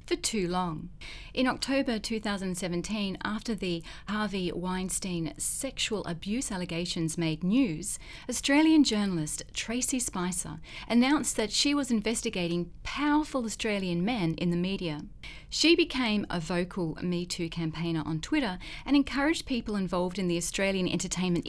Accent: Australian